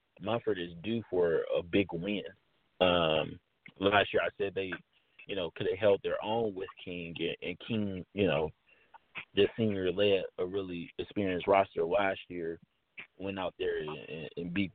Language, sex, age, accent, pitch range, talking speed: English, male, 30-49, American, 90-150 Hz, 175 wpm